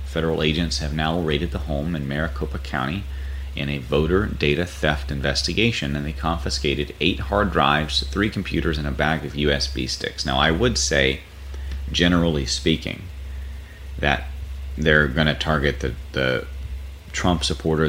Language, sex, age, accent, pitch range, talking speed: English, male, 30-49, American, 70-80 Hz, 150 wpm